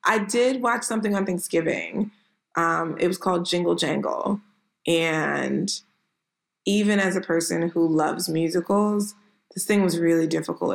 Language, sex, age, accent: English, female, 20-39, American